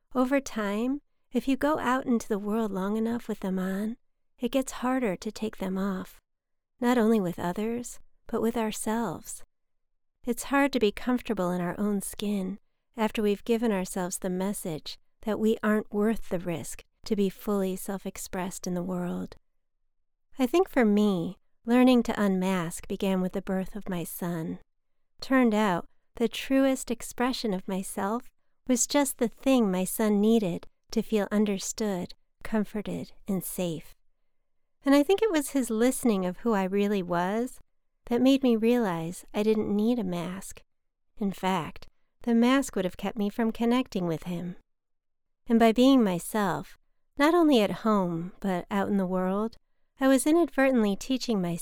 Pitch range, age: 185-235 Hz, 40-59